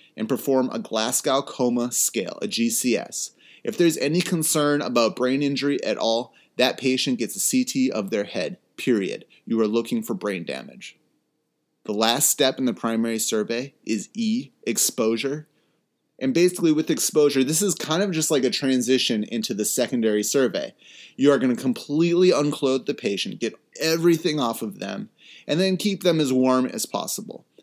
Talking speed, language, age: 170 wpm, English, 30-49